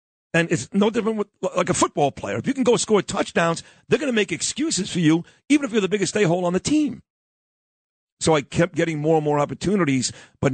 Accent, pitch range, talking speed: American, 140-185 Hz, 230 wpm